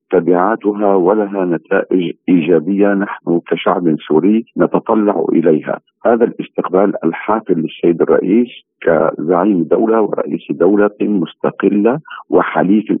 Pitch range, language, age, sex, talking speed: 90-110 Hz, Arabic, 50-69, male, 90 wpm